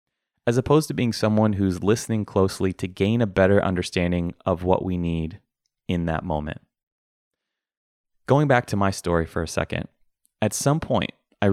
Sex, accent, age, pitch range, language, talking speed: male, American, 30-49, 90-115 Hz, English, 165 wpm